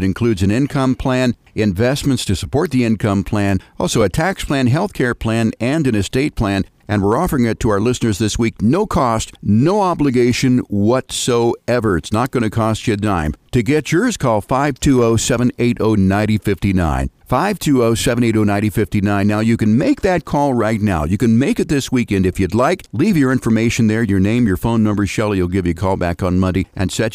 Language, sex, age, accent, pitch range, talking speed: English, male, 50-69, American, 105-130 Hz, 190 wpm